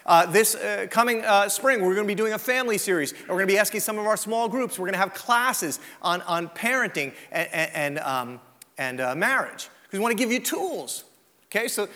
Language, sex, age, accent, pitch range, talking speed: English, male, 30-49, American, 160-230 Hz, 240 wpm